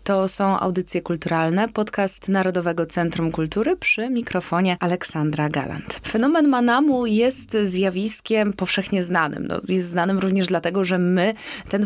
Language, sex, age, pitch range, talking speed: Polish, female, 20-39, 180-220 Hz, 130 wpm